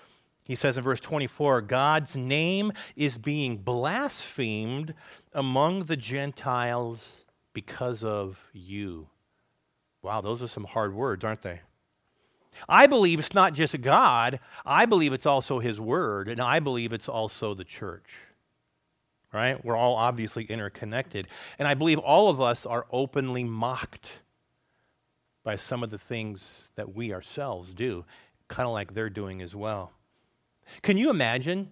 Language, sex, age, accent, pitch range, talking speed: English, male, 40-59, American, 115-180 Hz, 145 wpm